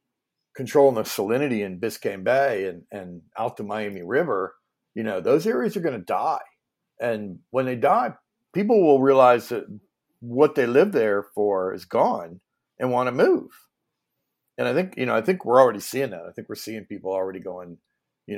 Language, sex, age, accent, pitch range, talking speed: English, male, 50-69, American, 90-115 Hz, 190 wpm